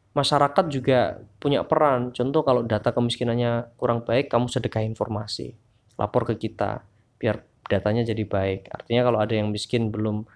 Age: 20-39